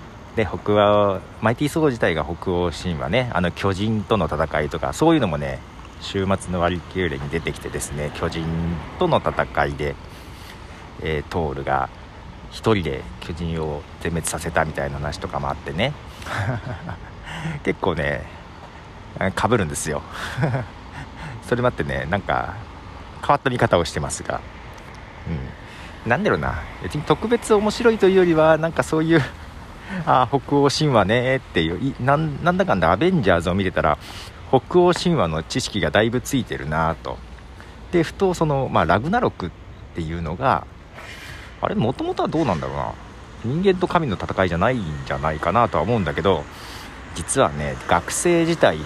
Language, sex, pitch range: Japanese, male, 80-125 Hz